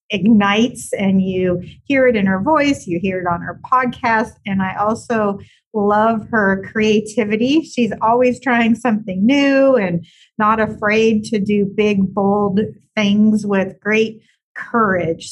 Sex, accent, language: female, American, English